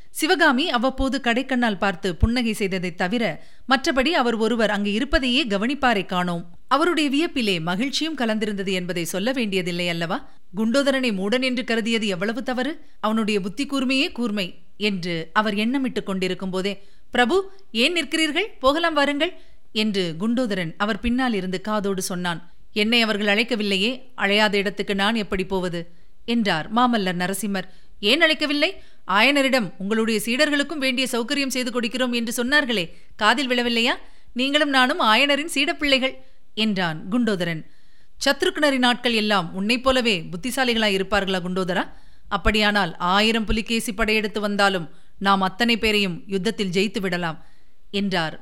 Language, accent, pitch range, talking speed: Tamil, native, 195-260 Hz, 120 wpm